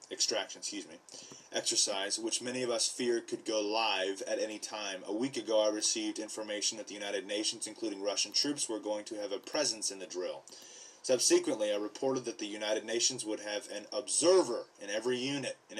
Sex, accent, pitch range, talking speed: male, American, 110-160 Hz, 200 wpm